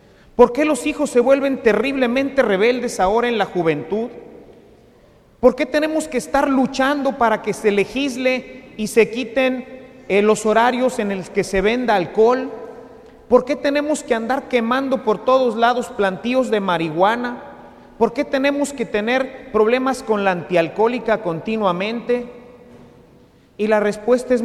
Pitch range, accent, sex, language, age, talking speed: 195-260 Hz, Mexican, male, English, 40-59, 145 wpm